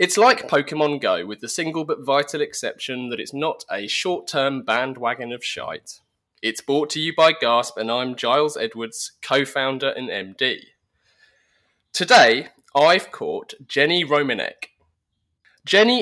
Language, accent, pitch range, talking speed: English, British, 120-155 Hz, 140 wpm